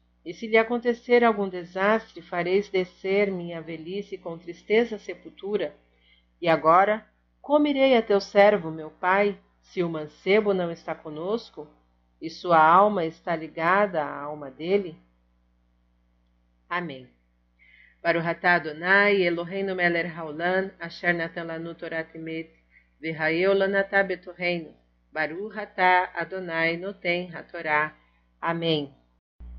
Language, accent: Portuguese, Brazilian